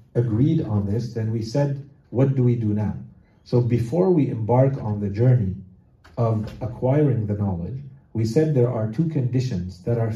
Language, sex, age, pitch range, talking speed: English, male, 40-59, 115-140 Hz, 175 wpm